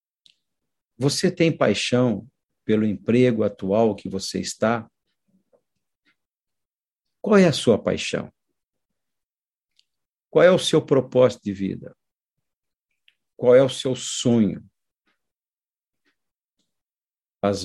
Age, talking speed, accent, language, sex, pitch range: 50-69, 90 wpm, Brazilian, Portuguese, male, 115-140 Hz